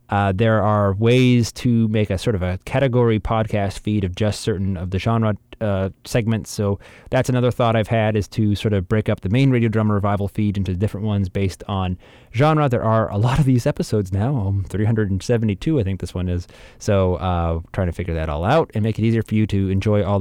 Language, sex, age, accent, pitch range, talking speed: English, male, 20-39, American, 100-135 Hz, 230 wpm